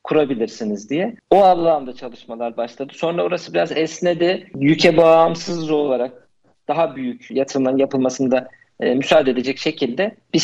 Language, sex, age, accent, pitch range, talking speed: Turkish, male, 50-69, native, 135-160 Hz, 120 wpm